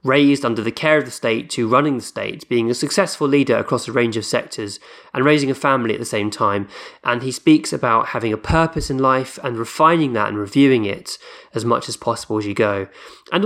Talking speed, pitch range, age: 225 wpm, 120-150 Hz, 20-39